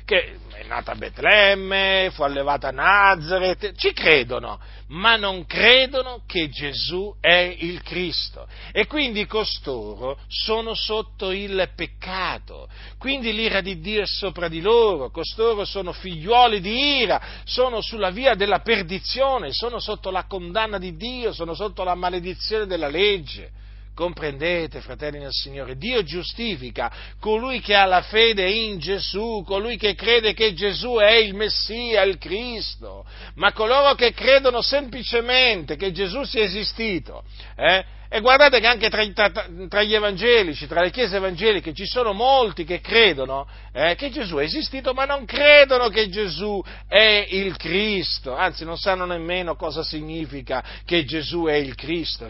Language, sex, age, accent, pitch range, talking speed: Italian, male, 40-59, native, 155-220 Hz, 150 wpm